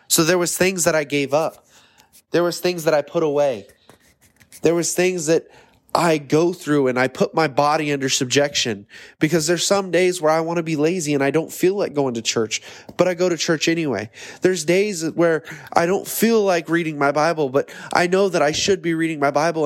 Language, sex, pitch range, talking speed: English, male, 135-170 Hz, 225 wpm